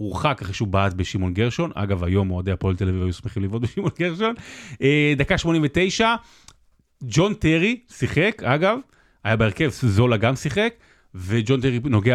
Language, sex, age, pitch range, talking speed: Hebrew, male, 30-49, 105-175 Hz, 145 wpm